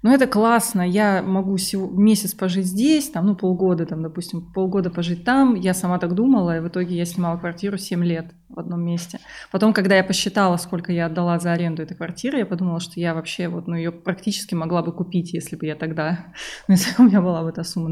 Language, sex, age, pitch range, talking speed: Russian, female, 20-39, 170-205 Hz, 220 wpm